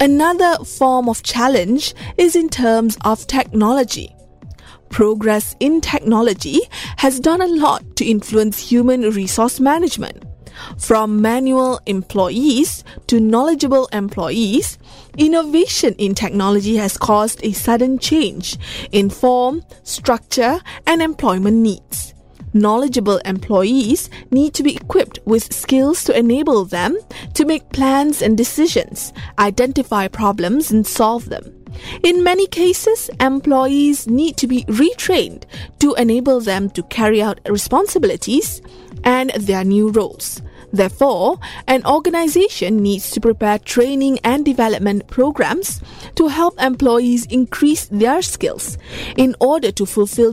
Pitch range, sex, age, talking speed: 215-290 Hz, female, 20-39, 120 wpm